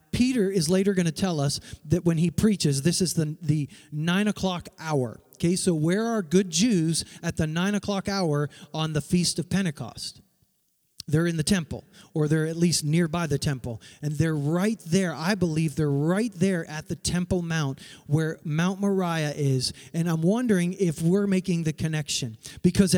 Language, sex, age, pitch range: English, male, 40-59, 155-200 Hz